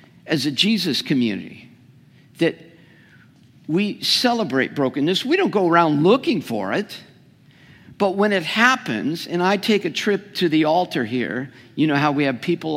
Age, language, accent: 50-69, English, American